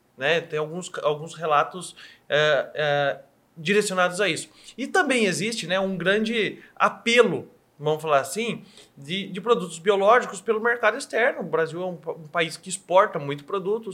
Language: Portuguese